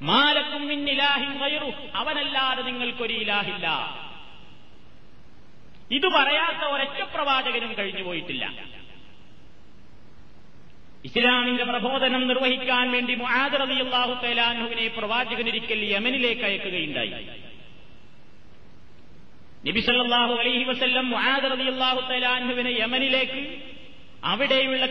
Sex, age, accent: male, 30-49, native